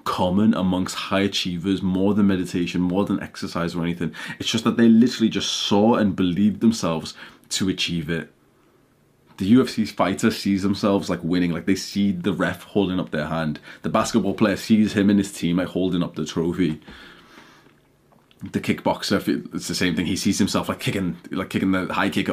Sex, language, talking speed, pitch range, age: male, English, 190 wpm, 95-115 Hz, 20-39